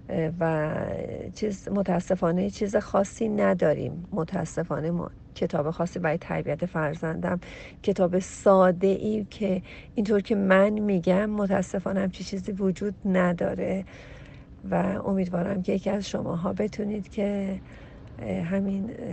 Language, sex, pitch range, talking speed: Persian, female, 170-200 Hz, 110 wpm